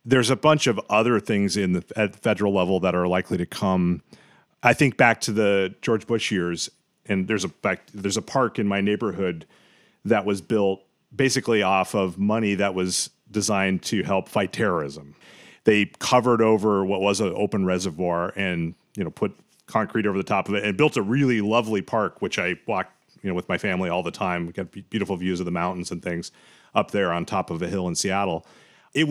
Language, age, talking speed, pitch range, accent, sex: English, 40-59, 210 wpm, 95-115 Hz, American, male